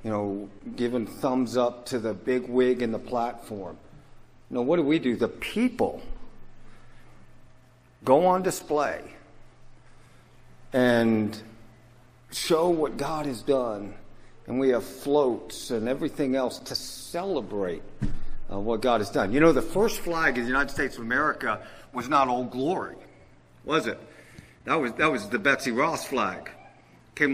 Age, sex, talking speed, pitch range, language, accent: 50-69, male, 150 wpm, 120-145 Hz, English, American